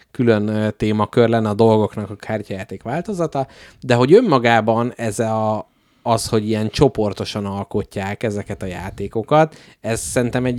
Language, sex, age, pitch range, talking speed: Hungarian, male, 30-49, 100-120 Hz, 130 wpm